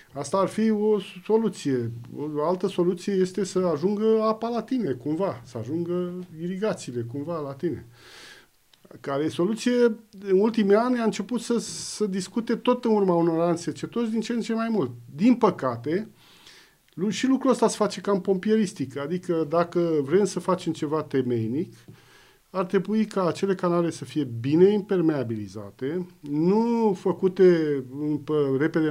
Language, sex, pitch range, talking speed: Romanian, male, 140-205 Hz, 150 wpm